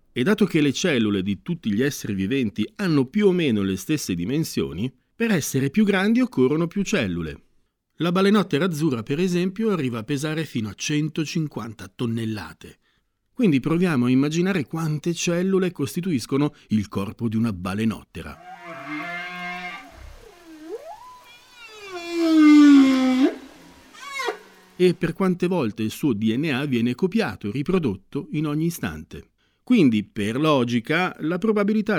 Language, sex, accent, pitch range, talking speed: Italian, male, native, 115-185 Hz, 125 wpm